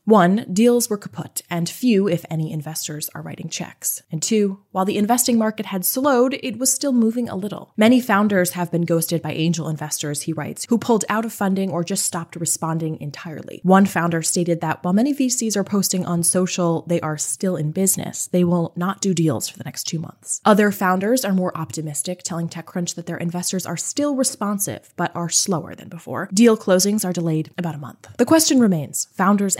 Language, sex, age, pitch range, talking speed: English, female, 20-39, 165-220 Hz, 205 wpm